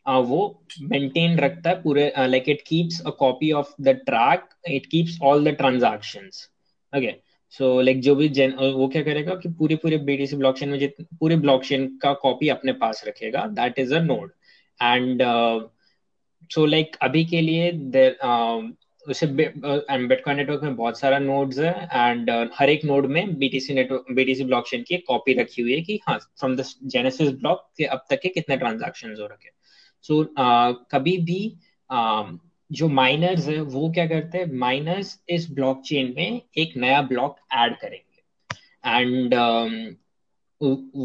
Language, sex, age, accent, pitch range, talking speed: Hindi, male, 20-39, native, 130-165 Hz, 115 wpm